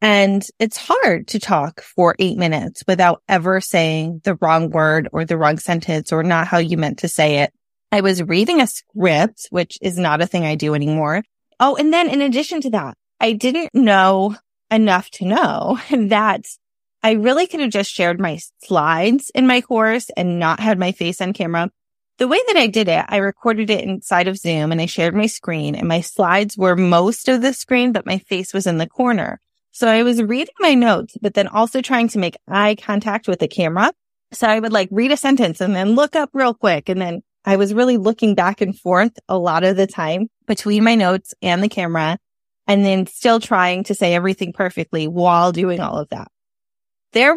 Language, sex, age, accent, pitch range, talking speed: English, female, 20-39, American, 175-230 Hz, 210 wpm